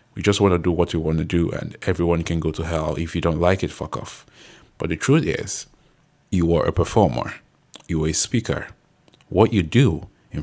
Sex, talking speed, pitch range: male, 225 wpm, 80-105 Hz